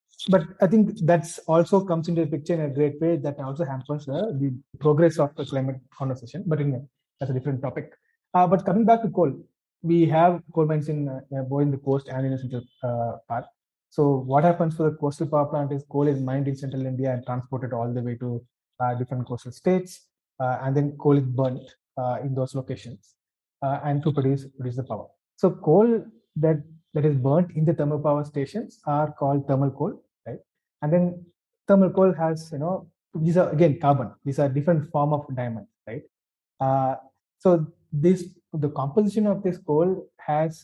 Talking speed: 200 wpm